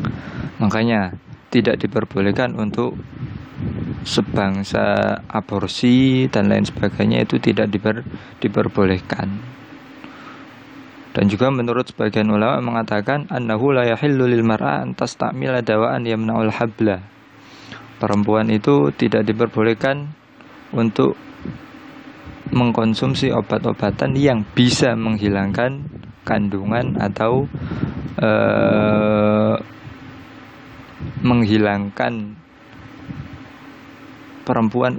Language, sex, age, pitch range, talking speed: Indonesian, male, 20-39, 105-125 Hz, 70 wpm